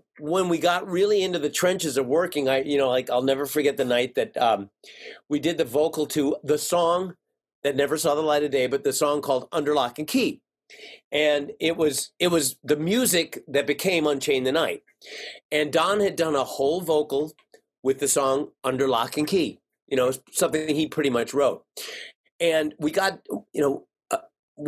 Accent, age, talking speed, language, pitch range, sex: American, 40-59, 200 wpm, English, 140-190 Hz, male